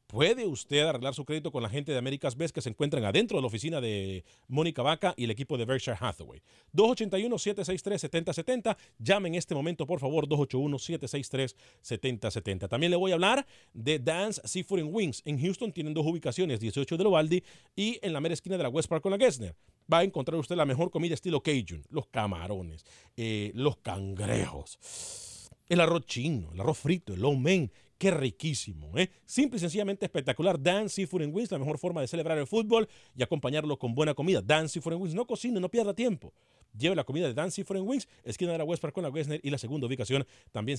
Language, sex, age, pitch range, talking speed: Spanish, male, 40-59, 125-185 Hz, 205 wpm